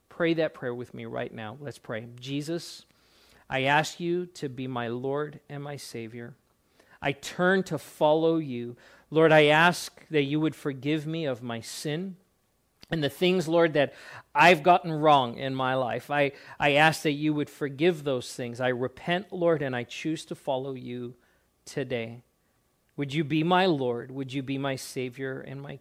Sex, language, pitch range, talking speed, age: male, English, 125-165 Hz, 180 wpm, 40-59